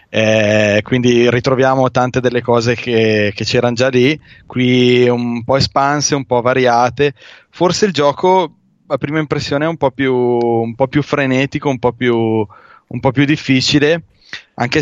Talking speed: 145 wpm